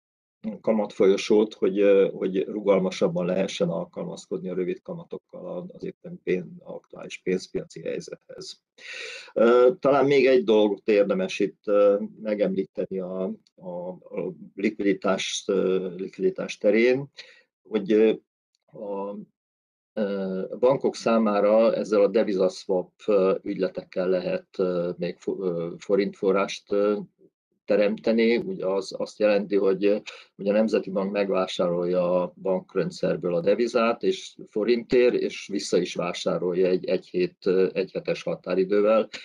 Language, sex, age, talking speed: Hungarian, male, 40-59, 95 wpm